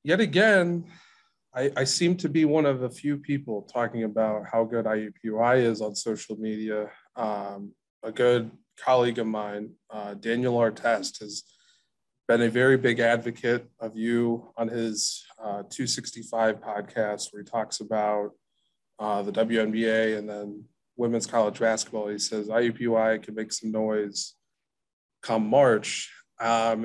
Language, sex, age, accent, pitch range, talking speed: English, male, 20-39, American, 110-125 Hz, 145 wpm